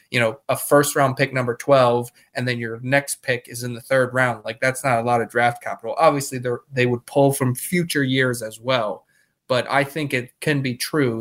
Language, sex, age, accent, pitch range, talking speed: English, male, 20-39, American, 120-145 Hz, 230 wpm